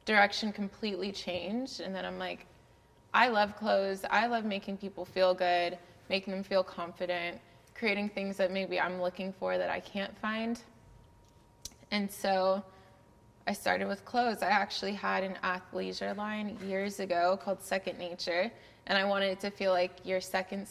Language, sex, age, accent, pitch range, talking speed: English, female, 20-39, American, 180-195 Hz, 165 wpm